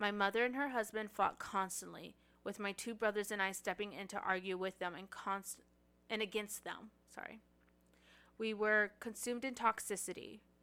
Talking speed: 170 wpm